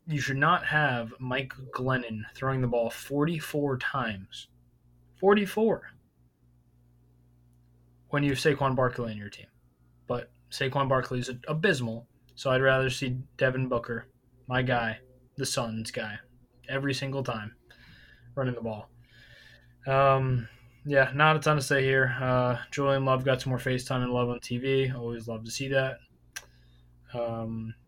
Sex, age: male, 20-39